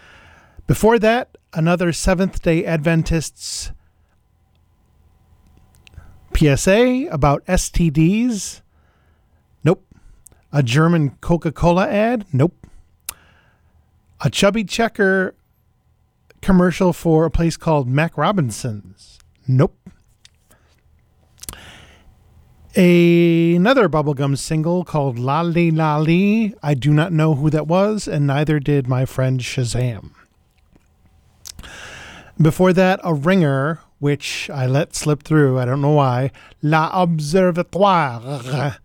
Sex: male